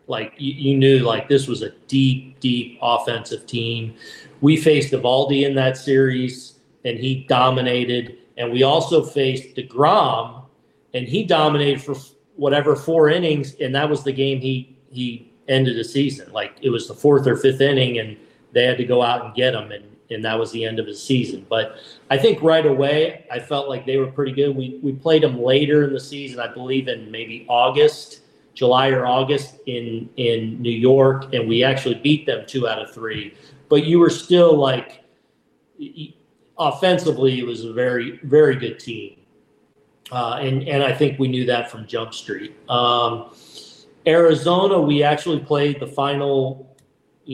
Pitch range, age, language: 120-140 Hz, 40-59, English